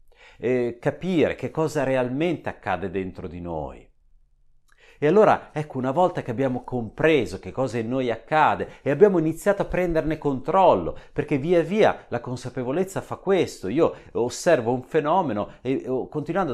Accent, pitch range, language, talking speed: native, 115-155 Hz, Italian, 150 wpm